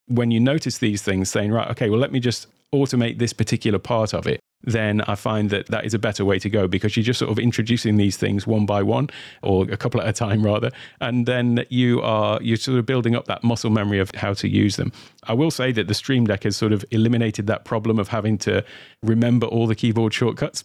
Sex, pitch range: male, 105-120 Hz